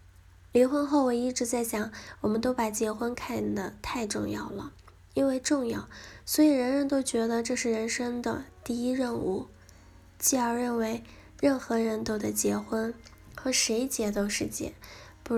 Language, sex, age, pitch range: Chinese, female, 10-29, 205-245 Hz